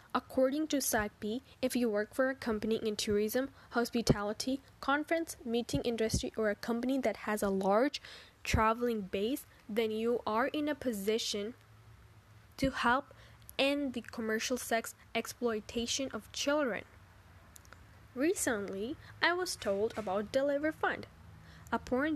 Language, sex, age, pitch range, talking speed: English, female, 10-29, 210-285 Hz, 125 wpm